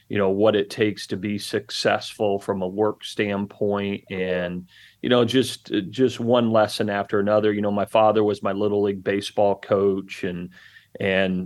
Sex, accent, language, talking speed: male, American, English, 175 wpm